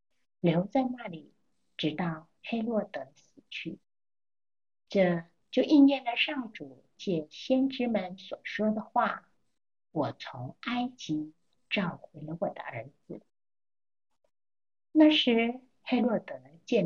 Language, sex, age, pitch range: Chinese, female, 50-69, 160-235 Hz